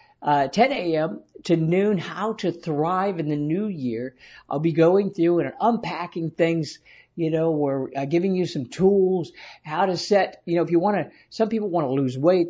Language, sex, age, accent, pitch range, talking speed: English, male, 60-79, American, 145-185 Hz, 200 wpm